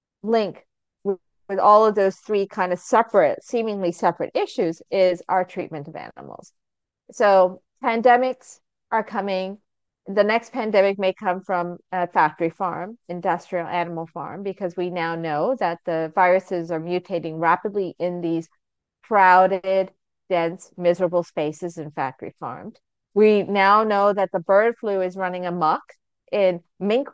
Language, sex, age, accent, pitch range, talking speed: English, female, 40-59, American, 170-205 Hz, 145 wpm